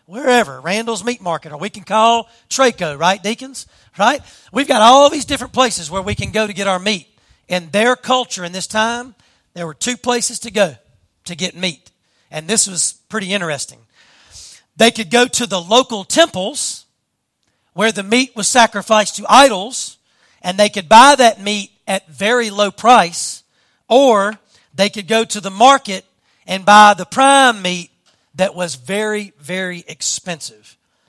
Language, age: English, 40-59